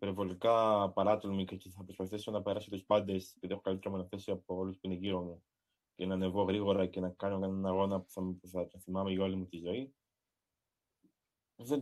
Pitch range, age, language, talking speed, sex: 90-110 Hz, 20-39, Greek, 205 wpm, male